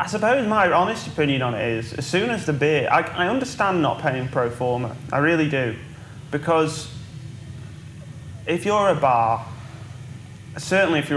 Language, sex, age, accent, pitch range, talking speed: English, male, 30-49, British, 130-155 Hz, 165 wpm